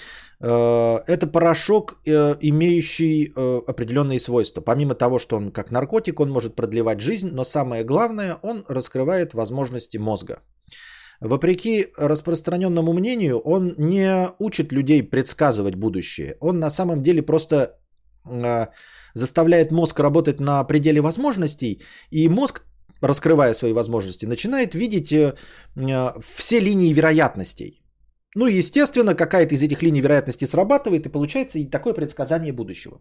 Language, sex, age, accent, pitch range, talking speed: Russian, male, 30-49, native, 135-185 Hz, 120 wpm